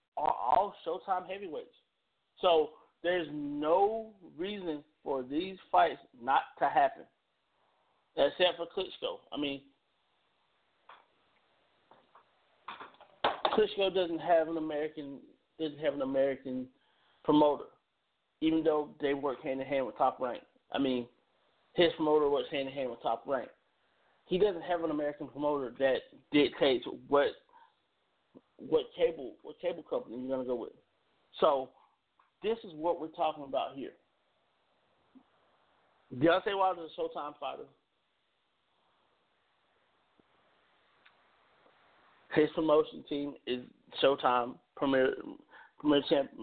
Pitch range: 145-210 Hz